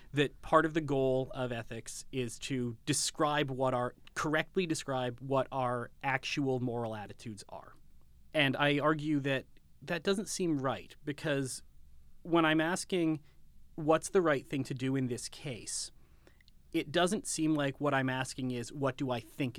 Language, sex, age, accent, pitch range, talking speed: English, male, 30-49, American, 120-150 Hz, 160 wpm